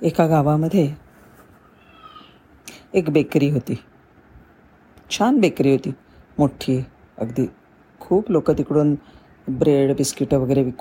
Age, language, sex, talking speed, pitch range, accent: 40-59, Marathi, female, 95 wpm, 140-195 Hz, native